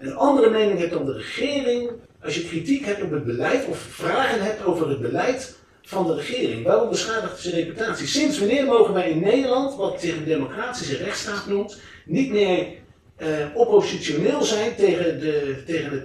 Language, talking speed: Dutch, 180 wpm